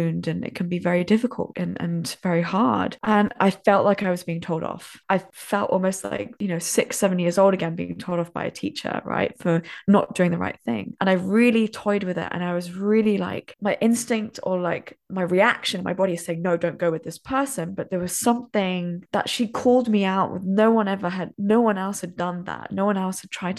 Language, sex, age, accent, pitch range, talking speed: English, female, 20-39, British, 180-215 Hz, 240 wpm